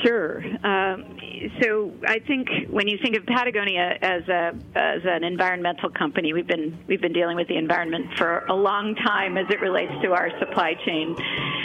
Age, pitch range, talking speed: 50-69, 175-210 Hz, 180 wpm